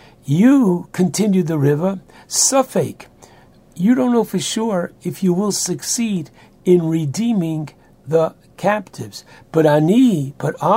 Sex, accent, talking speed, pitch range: male, American, 115 wpm, 150-185 Hz